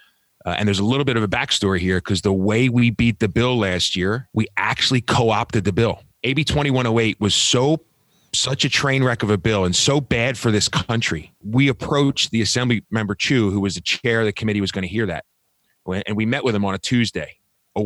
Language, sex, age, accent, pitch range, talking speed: English, male, 30-49, American, 95-115 Hz, 230 wpm